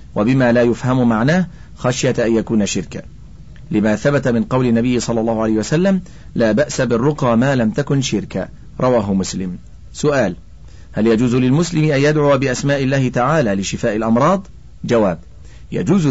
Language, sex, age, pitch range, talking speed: Arabic, male, 40-59, 105-130 Hz, 145 wpm